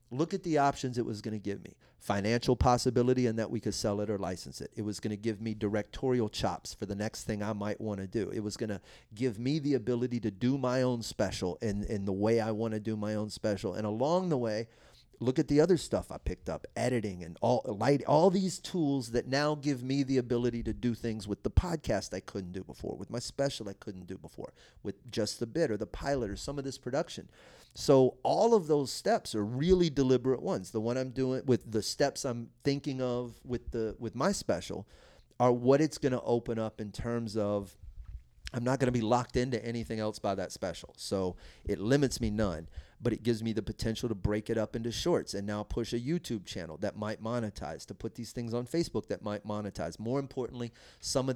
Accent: American